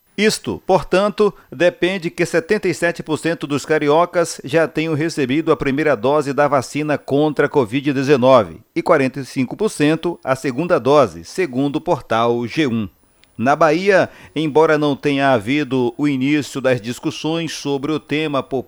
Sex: male